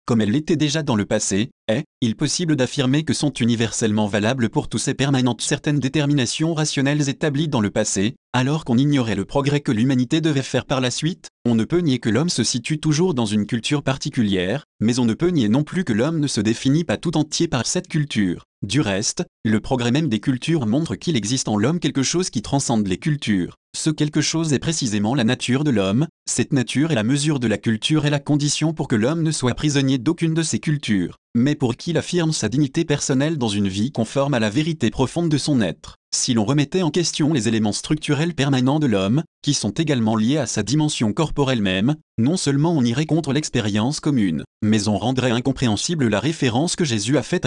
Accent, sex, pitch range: French, male, 115-155 Hz